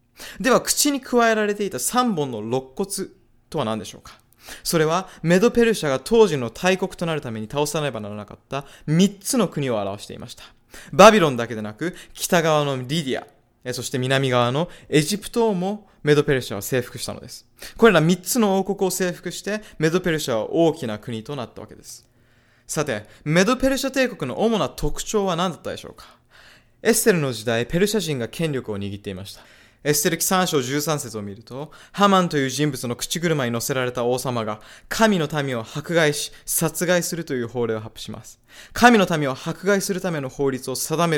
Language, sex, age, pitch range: Japanese, male, 20-39, 125-190 Hz